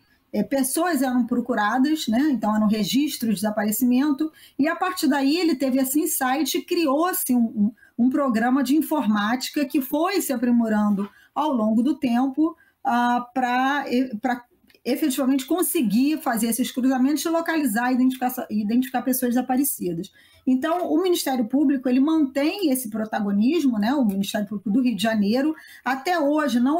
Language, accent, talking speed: Portuguese, Brazilian, 140 wpm